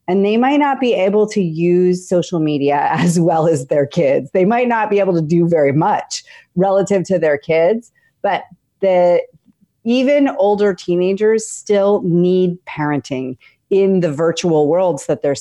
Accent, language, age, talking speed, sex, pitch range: American, English, 30-49, 160 wpm, female, 155-200 Hz